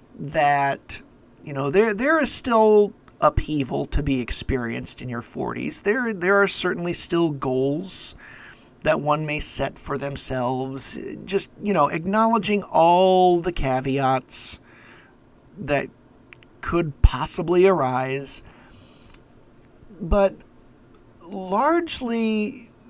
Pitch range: 130-190 Hz